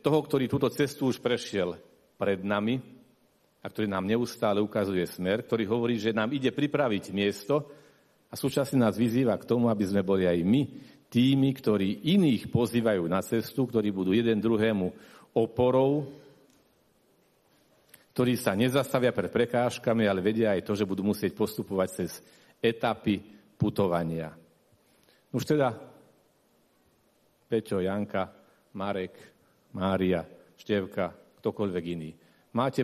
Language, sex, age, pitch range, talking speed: Slovak, male, 50-69, 95-125 Hz, 125 wpm